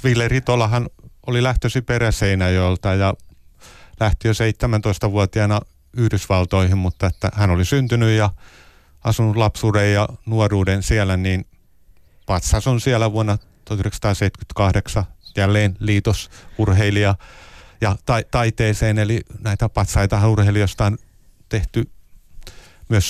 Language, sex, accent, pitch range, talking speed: Finnish, male, native, 95-115 Hz, 100 wpm